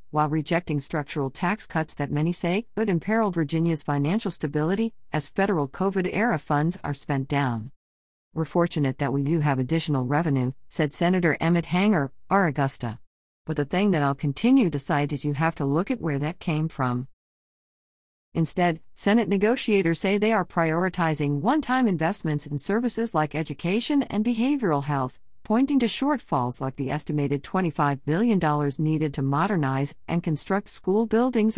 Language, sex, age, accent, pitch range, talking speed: English, female, 50-69, American, 145-195 Hz, 160 wpm